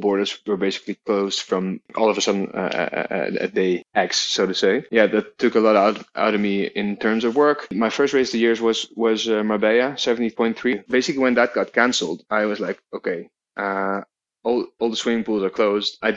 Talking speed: 225 wpm